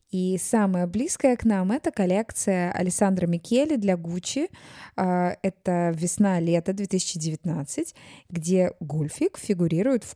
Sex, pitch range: female, 170-220 Hz